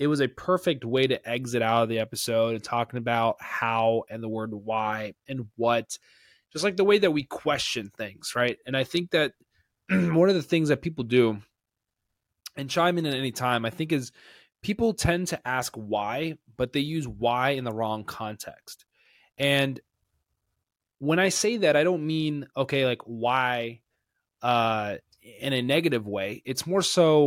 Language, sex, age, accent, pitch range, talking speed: English, male, 20-39, American, 115-145 Hz, 180 wpm